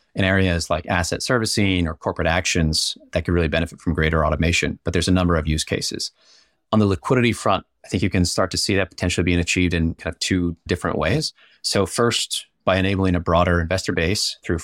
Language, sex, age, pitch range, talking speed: English, male, 30-49, 85-95 Hz, 215 wpm